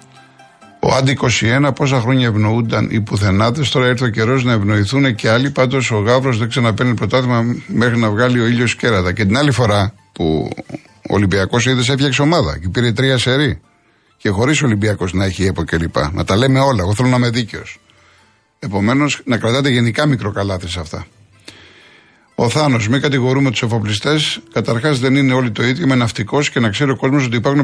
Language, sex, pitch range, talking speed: Greek, male, 110-135 Hz, 185 wpm